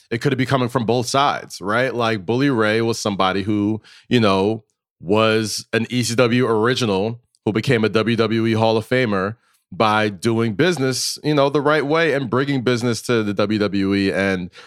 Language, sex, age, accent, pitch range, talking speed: English, male, 30-49, American, 110-150 Hz, 175 wpm